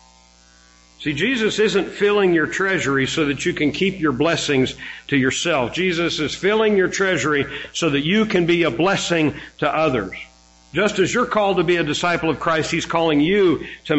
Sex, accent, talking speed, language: male, American, 185 wpm, English